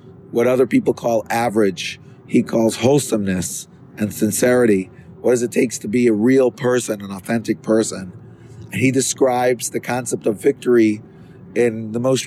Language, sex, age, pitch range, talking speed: English, male, 40-59, 115-130 Hz, 150 wpm